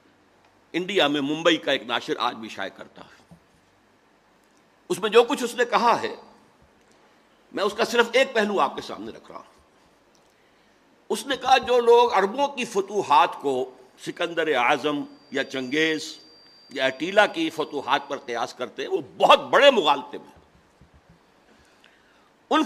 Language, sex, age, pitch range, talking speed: Urdu, male, 60-79, 160-255 Hz, 150 wpm